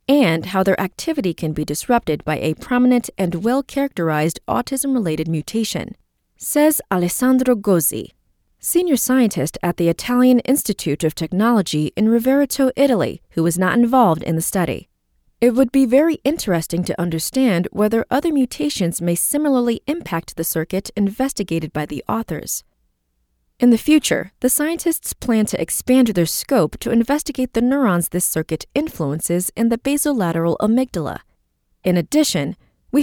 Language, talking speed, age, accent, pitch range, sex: English, 140 wpm, 30-49, American, 165-265 Hz, female